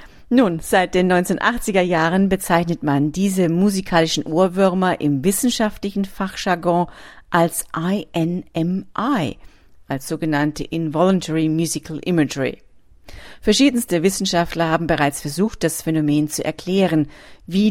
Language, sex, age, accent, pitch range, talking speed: German, female, 40-59, German, 155-195 Hz, 100 wpm